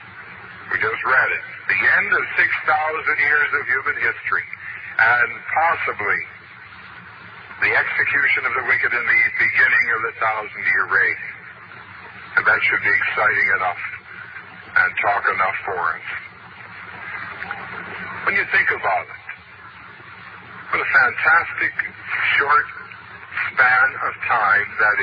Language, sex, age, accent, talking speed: English, male, 60-79, American, 120 wpm